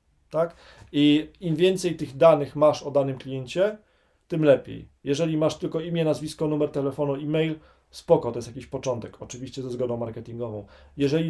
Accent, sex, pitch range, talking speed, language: native, male, 135-155 Hz, 165 wpm, Polish